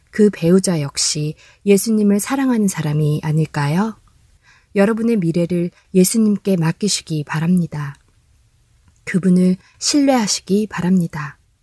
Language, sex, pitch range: Korean, female, 160-210 Hz